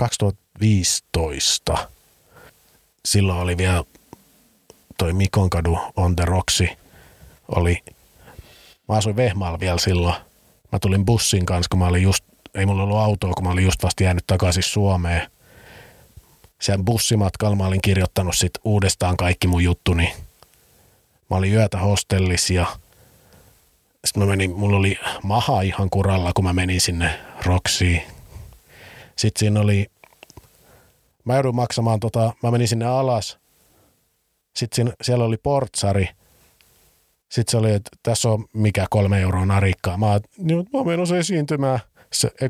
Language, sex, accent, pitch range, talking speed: Finnish, male, native, 90-115 Hz, 135 wpm